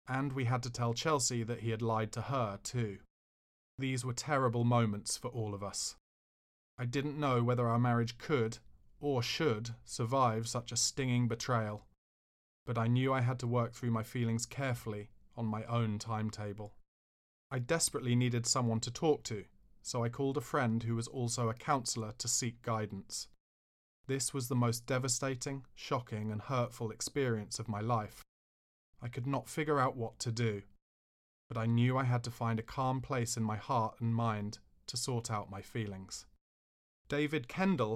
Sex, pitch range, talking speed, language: male, 110-130 Hz, 175 wpm, English